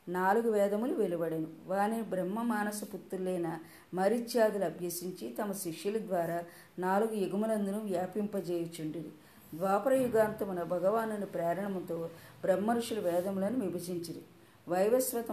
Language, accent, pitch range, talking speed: Telugu, native, 175-210 Hz, 90 wpm